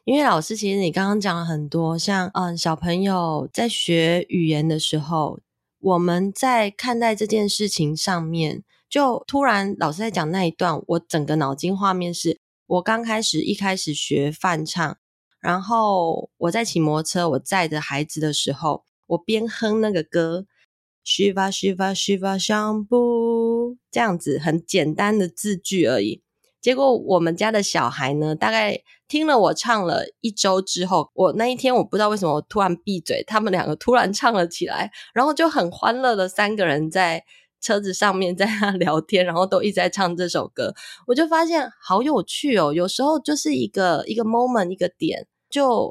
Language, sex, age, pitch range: Chinese, female, 20-39, 170-220 Hz